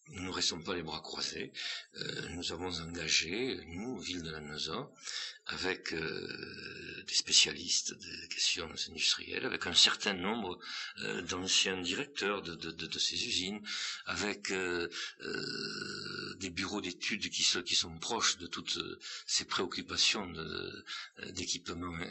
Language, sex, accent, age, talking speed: French, male, French, 60-79, 145 wpm